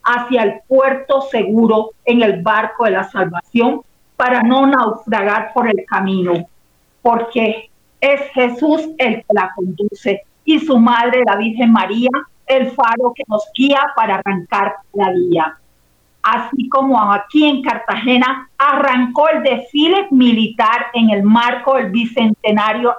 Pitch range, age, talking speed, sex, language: 215-255 Hz, 50-69, 135 wpm, female, Spanish